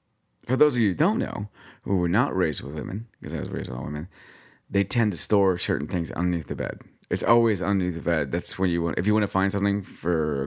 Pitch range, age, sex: 80-105 Hz, 30-49, male